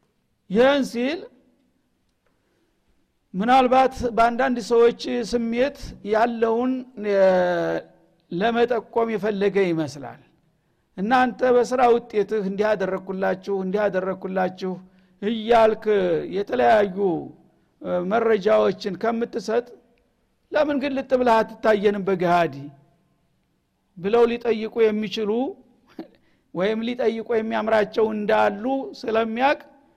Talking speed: 65 wpm